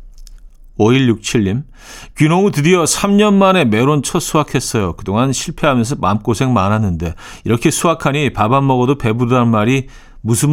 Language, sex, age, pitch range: Korean, male, 40-59, 100-150 Hz